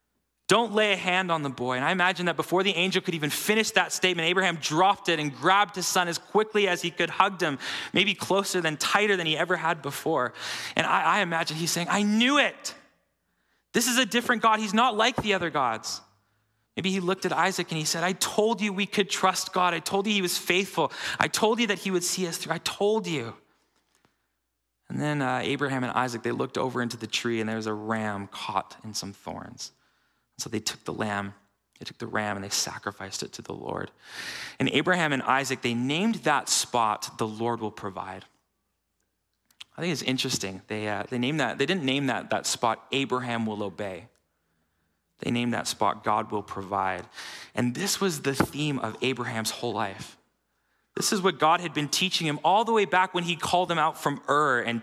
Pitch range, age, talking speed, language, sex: 115-185 Hz, 20-39, 215 wpm, English, male